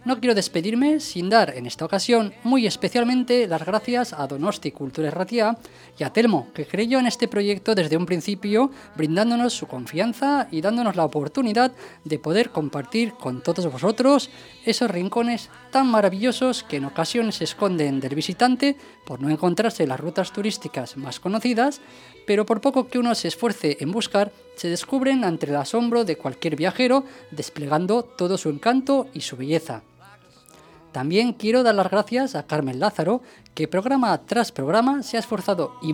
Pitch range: 160-235 Hz